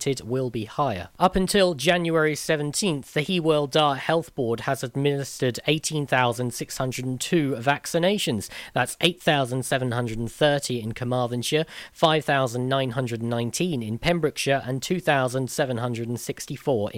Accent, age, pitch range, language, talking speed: British, 40-59, 120-155 Hz, English, 85 wpm